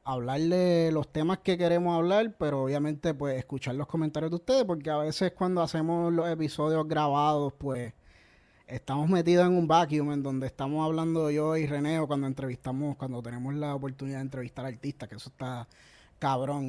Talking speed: 175 wpm